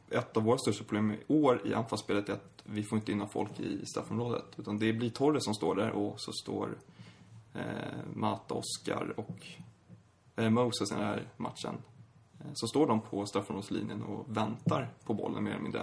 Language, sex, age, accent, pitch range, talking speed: Swedish, male, 20-39, native, 105-120 Hz, 195 wpm